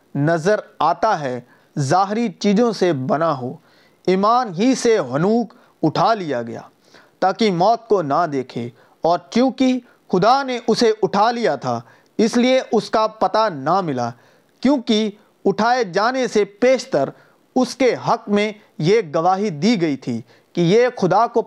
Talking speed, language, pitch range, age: 150 wpm, Urdu, 170-235 Hz, 40-59